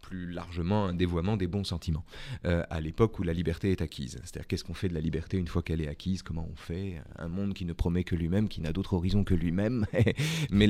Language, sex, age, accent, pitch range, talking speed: French, male, 40-59, French, 85-110 Hz, 245 wpm